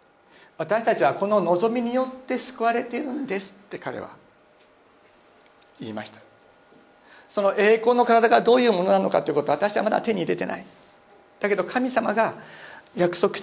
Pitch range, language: 155-220 Hz, Japanese